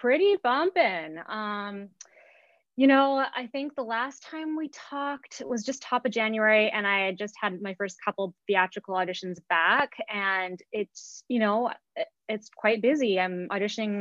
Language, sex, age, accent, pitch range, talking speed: English, female, 20-39, American, 190-240 Hz, 160 wpm